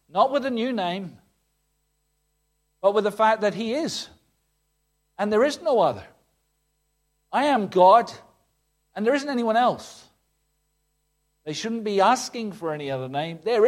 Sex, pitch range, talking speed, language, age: male, 150-205 Hz, 150 wpm, English, 50-69